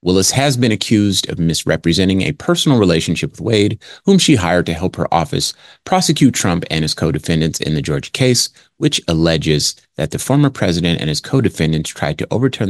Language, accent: English, American